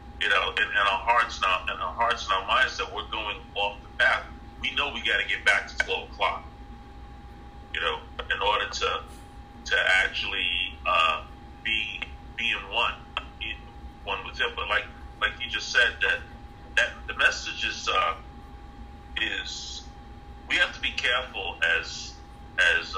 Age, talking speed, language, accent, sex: 30-49, 170 wpm, English, American, male